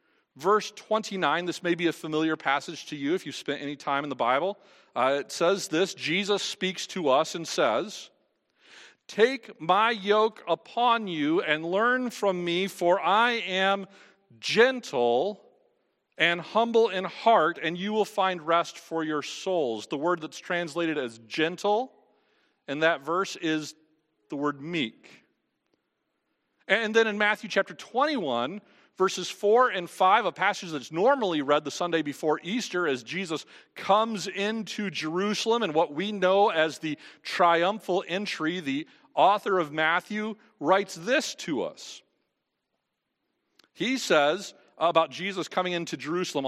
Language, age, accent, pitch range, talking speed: English, 40-59, American, 155-210 Hz, 145 wpm